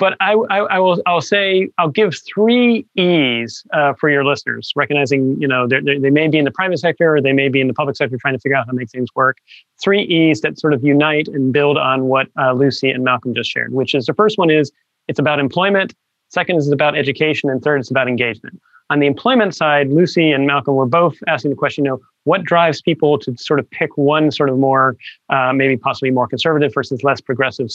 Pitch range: 135-160 Hz